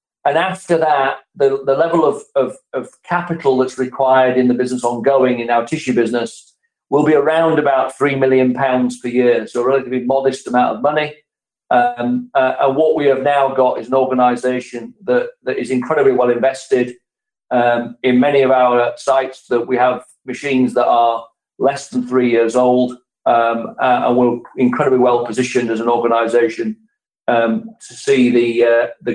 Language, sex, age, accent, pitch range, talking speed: English, male, 40-59, British, 125-160 Hz, 175 wpm